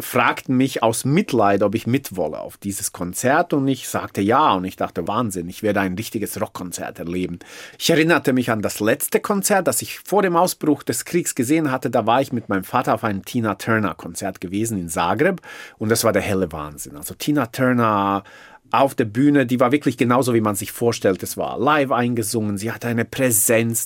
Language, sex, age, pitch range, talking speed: German, male, 40-59, 110-145 Hz, 205 wpm